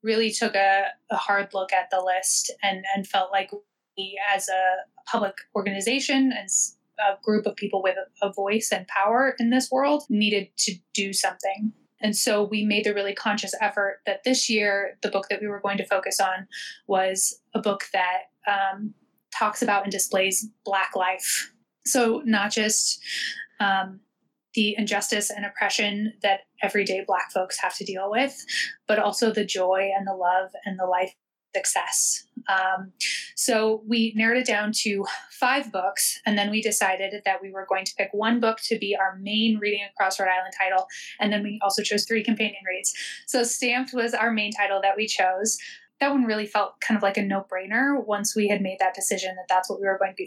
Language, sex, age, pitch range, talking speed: English, female, 10-29, 195-220 Hz, 195 wpm